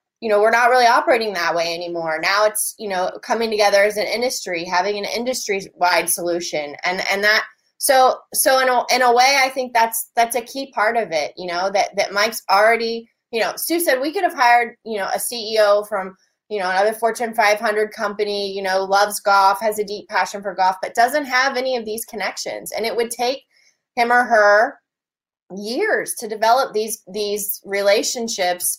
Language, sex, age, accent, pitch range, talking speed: English, female, 20-39, American, 195-245 Hz, 200 wpm